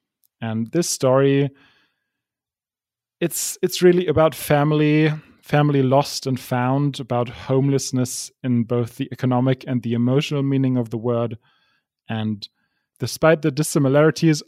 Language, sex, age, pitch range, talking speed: English, male, 30-49, 120-145 Hz, 120 wpm